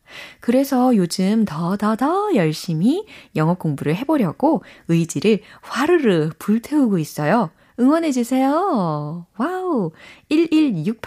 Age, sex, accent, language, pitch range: 20-39, female, native, Korean, 160-240 Hz